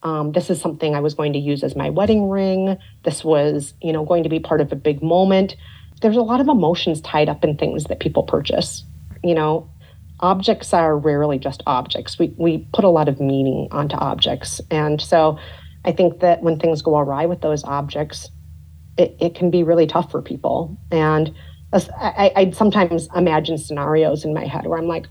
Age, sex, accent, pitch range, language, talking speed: 30-49, female, American, 145-170 Hz, English, 205 wpm